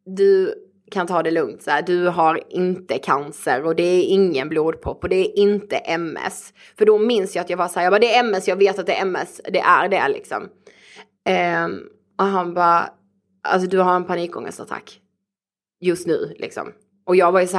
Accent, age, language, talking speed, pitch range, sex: Swedish, 20-39, English, 210 wpm, 170-200 Hz, female